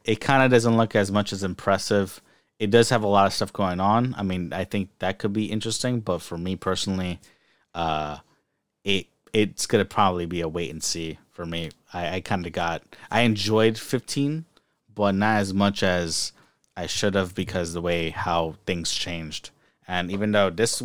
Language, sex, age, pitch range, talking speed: English, male, 30-49, 85-110 Hz, 200 wpm